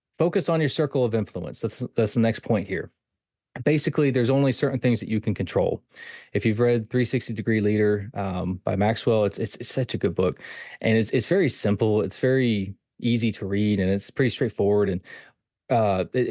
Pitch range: 100-125 Hz